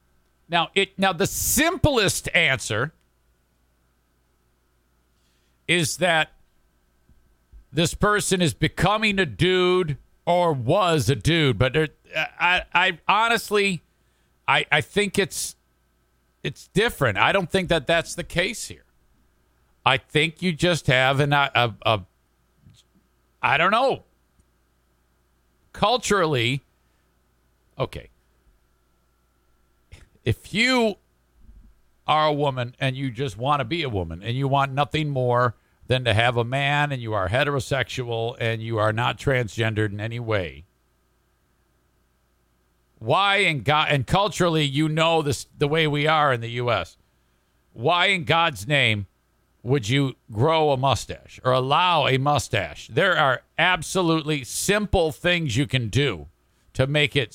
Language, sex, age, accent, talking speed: English, male, 50-69, American, 130 wpm